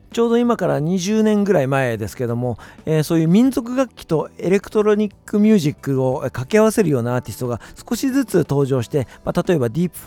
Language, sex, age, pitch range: Japanese, male, 50-69, 115-175 Hz